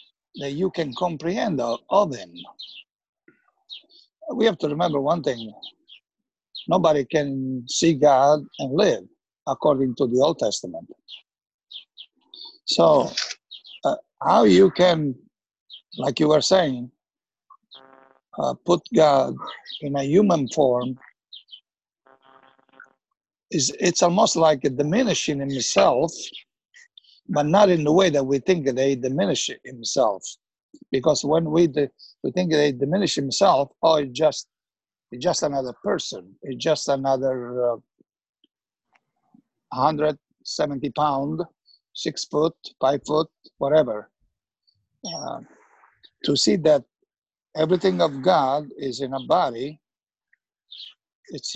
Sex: male